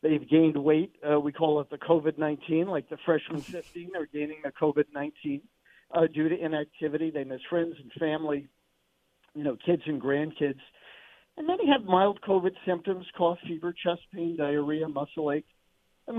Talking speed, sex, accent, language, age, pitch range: 170 wpm, male, American, English, 50-69, 140-180 Hz